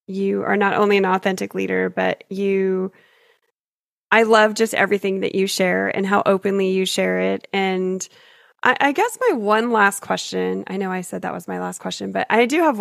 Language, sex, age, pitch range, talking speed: English, female, 20-39, 180-230 Hz, 200 wpm